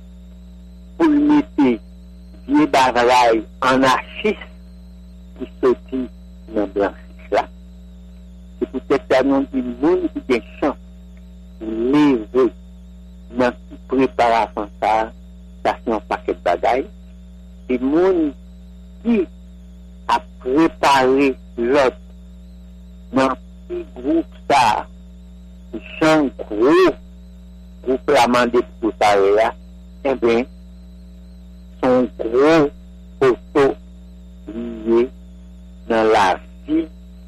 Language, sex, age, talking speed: English, male, 60-79, 95 wpm